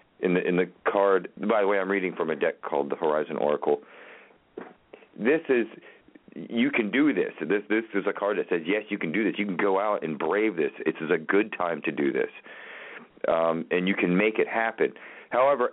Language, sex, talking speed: English, male, 230 wpm